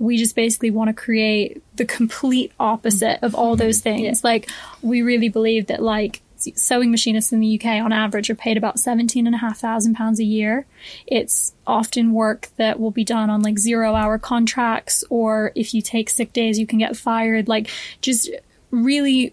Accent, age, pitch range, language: American, 10-29, 220-235 Hz, English